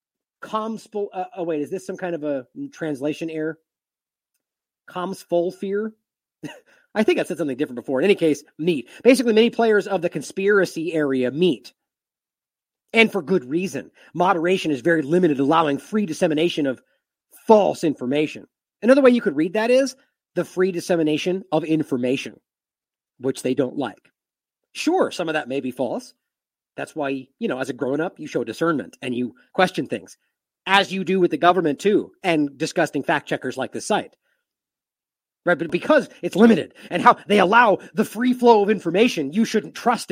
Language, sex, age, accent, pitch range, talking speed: English, male, 30-49, American, 155-220 Hz, 175 wpm